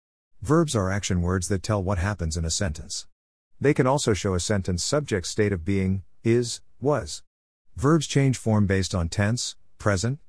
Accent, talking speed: American, 175 wpm